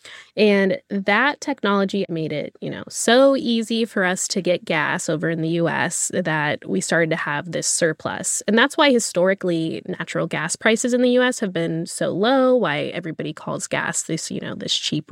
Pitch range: 180-240 Hz